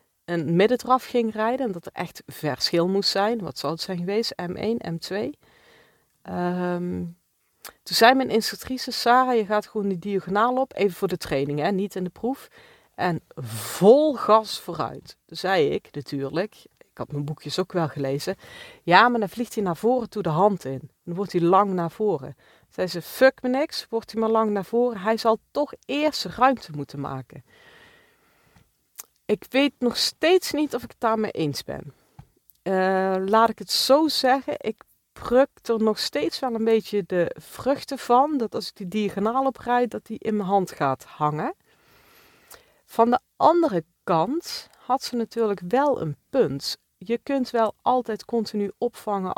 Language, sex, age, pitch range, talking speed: Dutch, female, 40-59, 180-250 Hz, 175 wpm